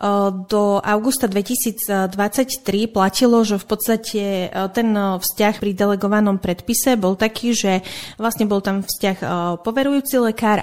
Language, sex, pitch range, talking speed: Slovak, female, 190-220 Hz, 120 wpm